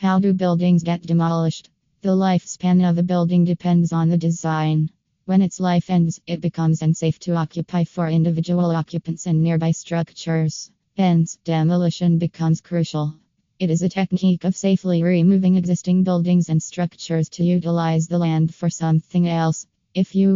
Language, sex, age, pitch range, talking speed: English, female, 20-39, 165-180 Hz, 155 wpm